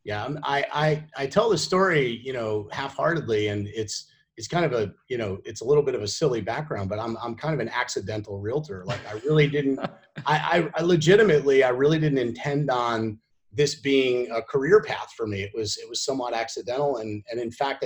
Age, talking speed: 30-49, 210 wpm